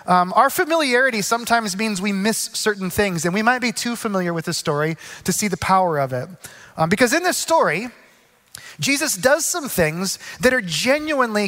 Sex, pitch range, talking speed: male, 180-240 Hz, 190 wpm